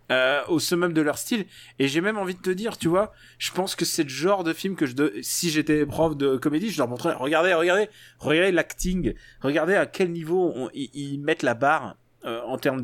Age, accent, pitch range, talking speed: 20-39, French, 125-155 Hz, 235 wpm